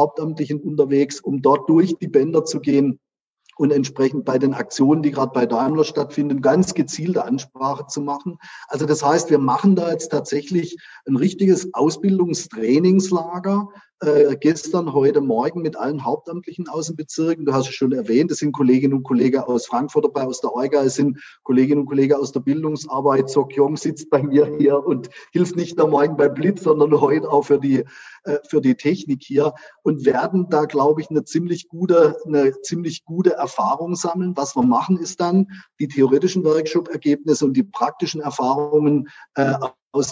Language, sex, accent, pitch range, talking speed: German, male, German, 135-170 Hz, 170 wpm